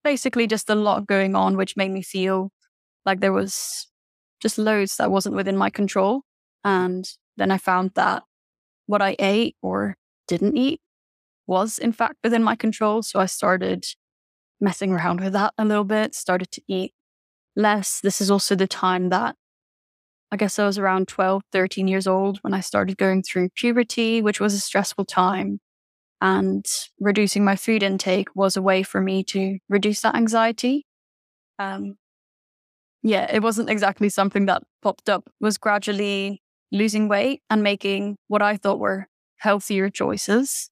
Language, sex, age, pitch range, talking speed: Italian, female, 10-29, 185-210 Hz, 165 wpm